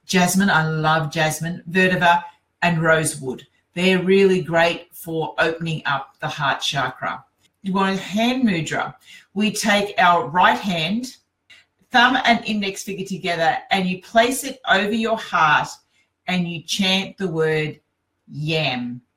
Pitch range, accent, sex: 165-215 Hz, Australian, female